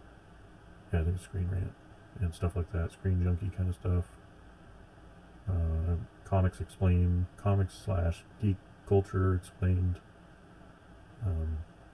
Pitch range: 90-100 Hz